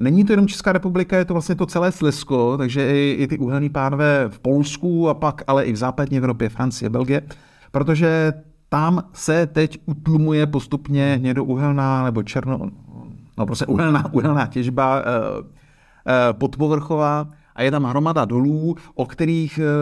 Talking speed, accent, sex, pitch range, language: 155 wpm, native, male, 115-150 Hz, Czech